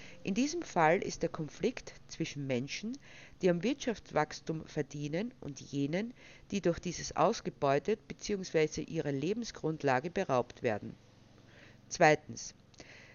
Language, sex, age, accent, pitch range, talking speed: German, female, 50-69, Austrian, 140-200 Hz, 110 wpm